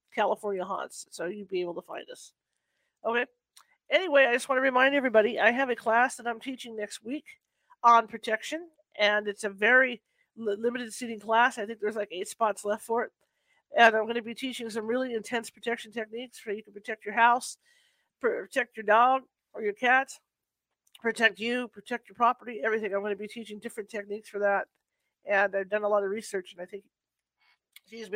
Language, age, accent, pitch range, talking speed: English, 50-69, American, 210-250 Hz, 200 wpm